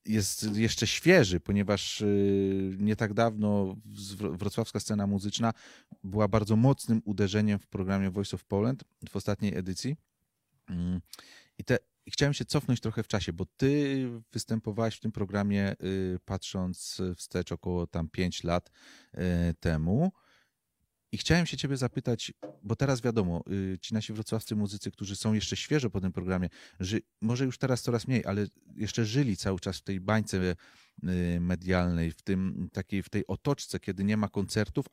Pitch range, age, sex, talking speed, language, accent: 95-115 Hz, 30-49, male, 155 wpm, Polish, native